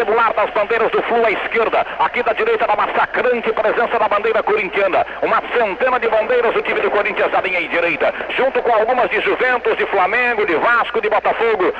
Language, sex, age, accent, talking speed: Portuguese, male, 60-79, Brazilian, 205 wpm